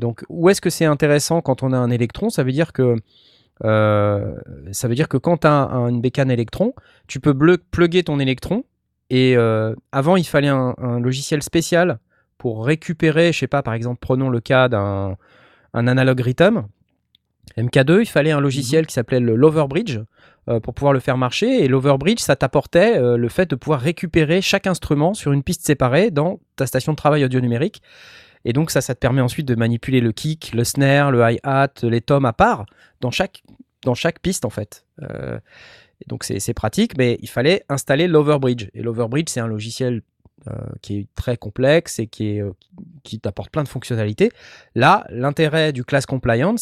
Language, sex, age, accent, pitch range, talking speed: French, male, 20-39, French, 120-155 Hz, 195 wpm